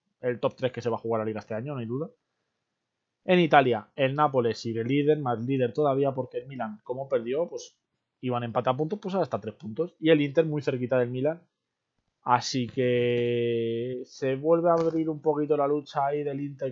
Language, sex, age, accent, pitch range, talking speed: Spanish, male, 20-39, Spanish, 120-145 Hz, 210 wpm